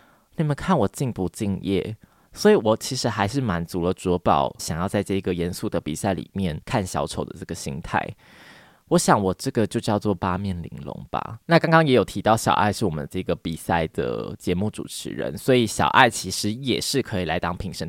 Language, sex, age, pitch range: Chinese, male, 20-39, 95-140 Hz